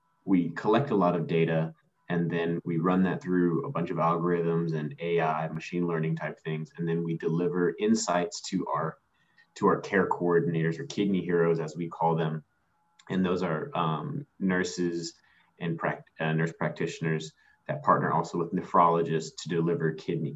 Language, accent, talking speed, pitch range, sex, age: English, American, 170 wpm, 85-100 Hz, male, 20-39